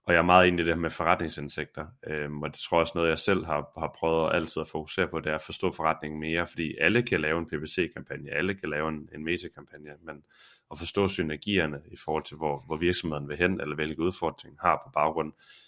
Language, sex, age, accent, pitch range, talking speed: Danish, male, 20-39, native, 75-90 Hz, 235 wpm